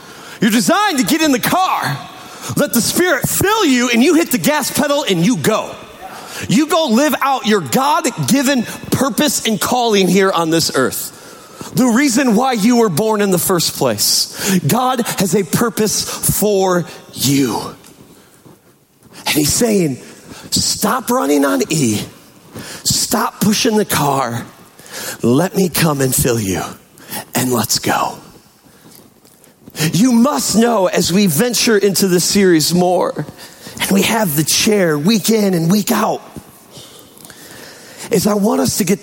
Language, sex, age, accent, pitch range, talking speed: English, male, 40-59, American, 165-240 Hz, 150 wpm